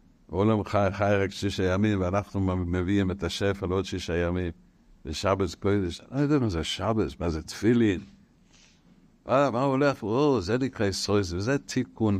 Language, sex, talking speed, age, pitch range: Hebrew, male, 150 wpm, 60-79, 90-110 Hz